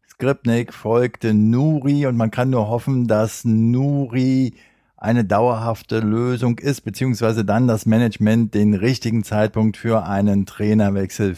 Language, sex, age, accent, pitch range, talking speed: German, male, 50-69, German, 110-130 Hz, 125 wpm